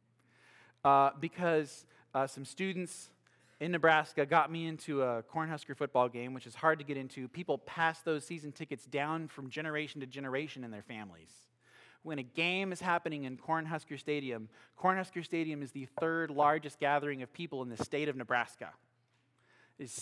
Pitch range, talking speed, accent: 125-165 Hz, 170 wpm, American